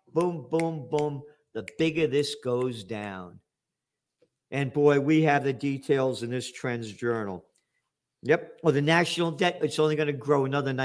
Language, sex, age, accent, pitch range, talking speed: English, male, 50-69, American, 140-185 Hz, 160 wpm